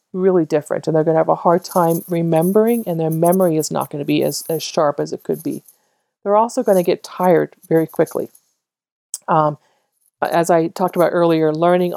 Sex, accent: female, American